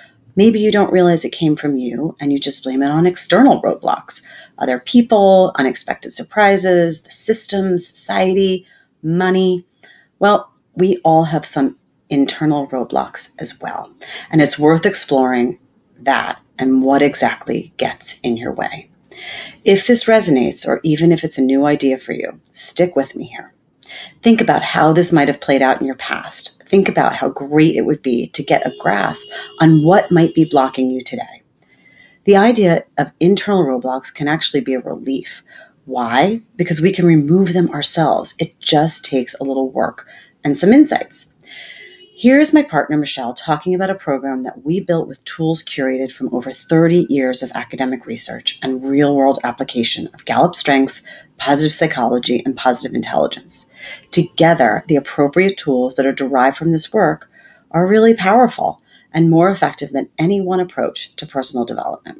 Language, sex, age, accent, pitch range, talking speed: English, female, 40-59, American, 135-185 Hz, 165 wpm